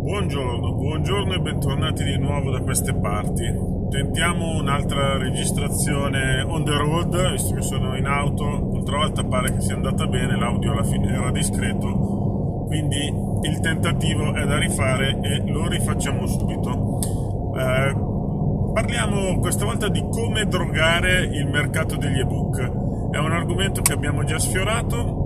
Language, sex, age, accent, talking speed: Italian, male, 30-49, native, 145 wpm